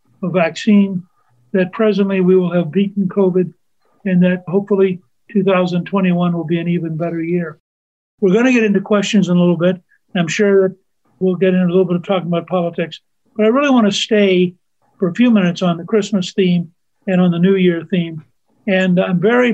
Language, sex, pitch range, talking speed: English, male, 175-205 Hz, 195 wpm